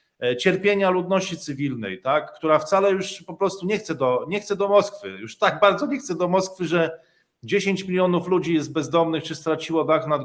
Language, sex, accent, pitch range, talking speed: Polish, male, native, 155-195 Hz, 195 wpm